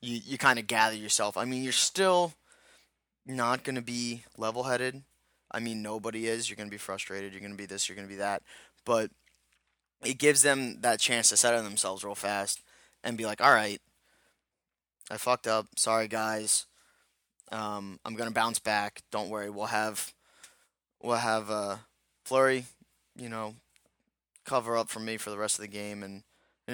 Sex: male